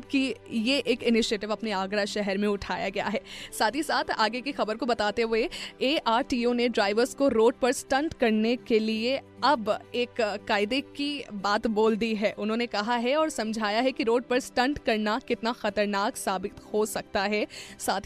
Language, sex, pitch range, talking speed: Hindi, female, 220-275 Hz, 185 wpm